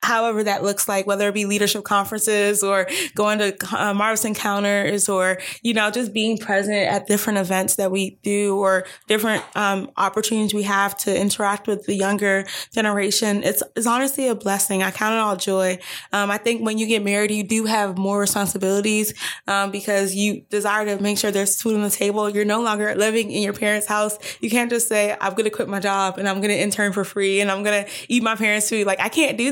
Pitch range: 195-220 Hz